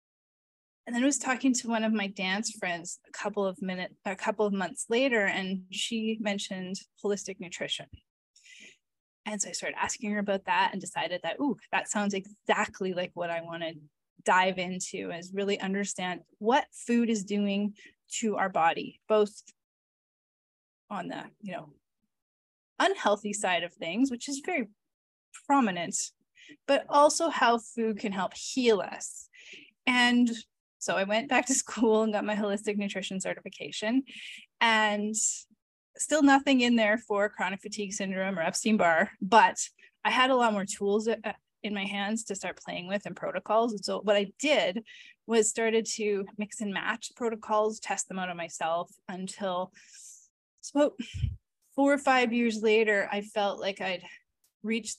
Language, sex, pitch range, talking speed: English, female, 195-230 Hz, 160 wpm